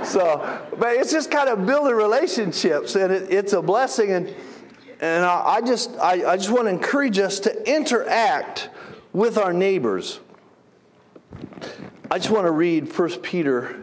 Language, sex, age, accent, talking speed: English, male, 50-69, American, 160 wpm